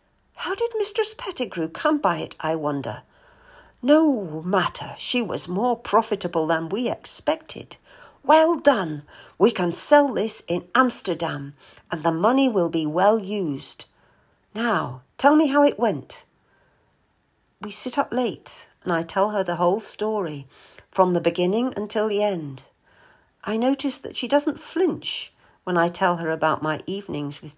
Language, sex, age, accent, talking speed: English, female, 50-69, British, 150 wpm